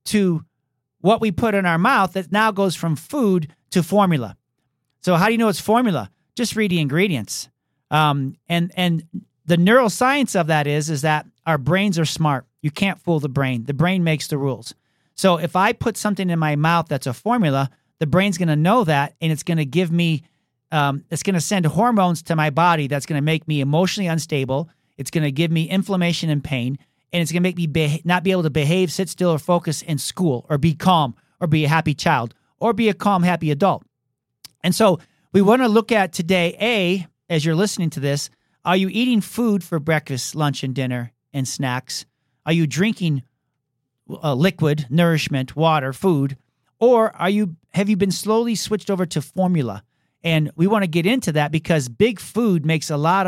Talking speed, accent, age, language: 205 wpm, American, 40-59, English